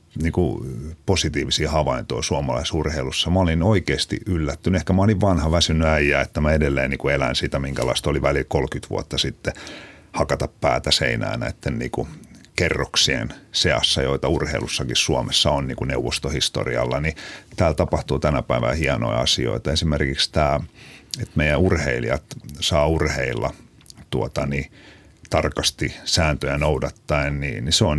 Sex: male